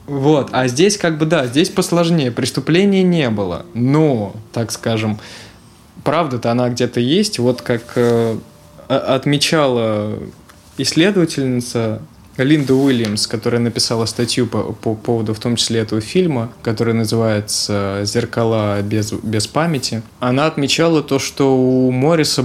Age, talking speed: 20-39, 130 wpm